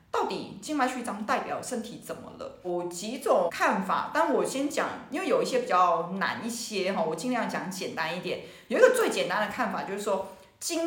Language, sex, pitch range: Chinese, female, 180-255 Hz